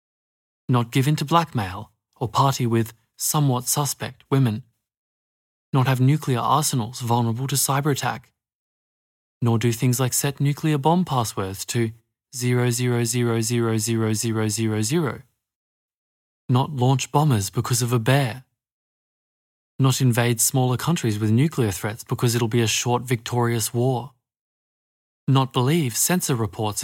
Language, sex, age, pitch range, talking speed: English, male, 20-39, 110-135 Hz, 140 wpm